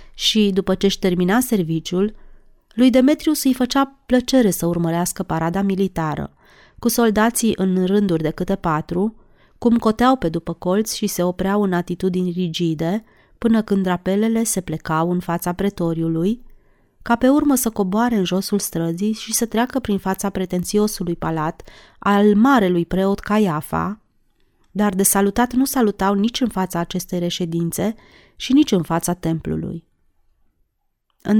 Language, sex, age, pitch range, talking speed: Romanian, female, 30-49, 175-230 Hz, 145 wpm